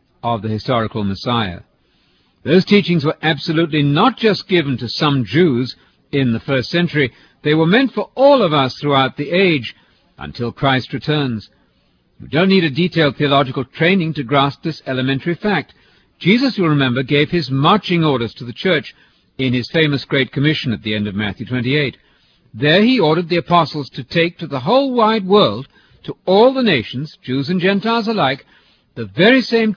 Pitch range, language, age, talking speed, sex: 125-180 Hz, English, 60-79, 175 wpm, male